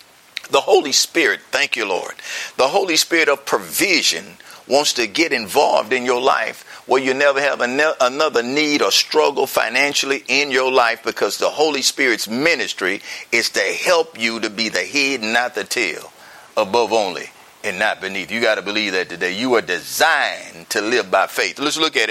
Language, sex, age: English, male, 50-69